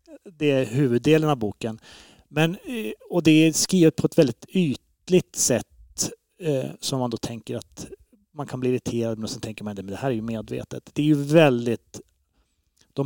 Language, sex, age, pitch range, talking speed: Swedish, male, 30-49, 120-150 Hz, 190 wpm